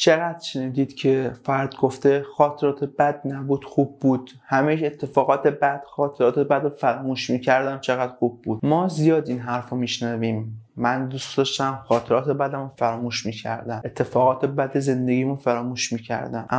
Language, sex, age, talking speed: Persian, male, 30-49, 135 wpm